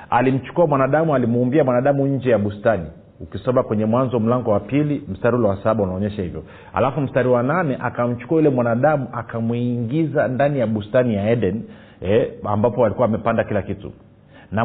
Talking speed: 160 wpm